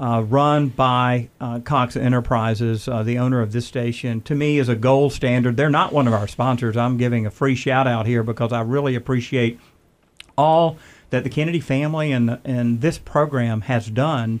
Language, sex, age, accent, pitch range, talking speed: English, male, 50-69, American, 120-140 Hz, 195 wpm